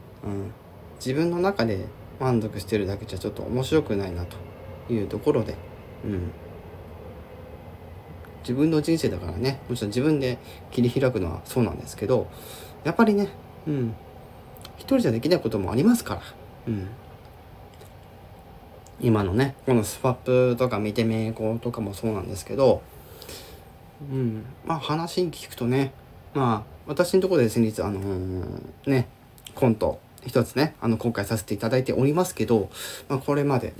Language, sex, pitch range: Japanese, male, 105-135 Hz